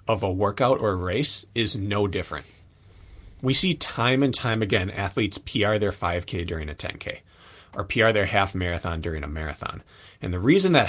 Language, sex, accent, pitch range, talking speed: English, male, American, 90-115 Hz, 185 wpm